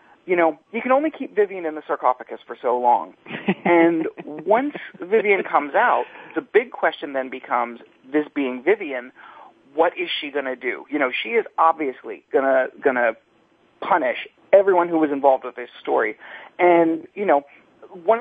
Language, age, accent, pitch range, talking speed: English, 40-59, American, 145-210 Hz, 170 wpm